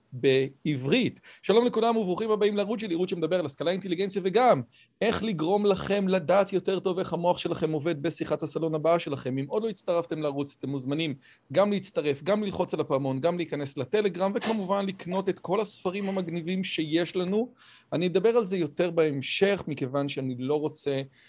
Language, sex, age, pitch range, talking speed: Hebrew, male, 40-59, 145-195 Hz, 170 wpm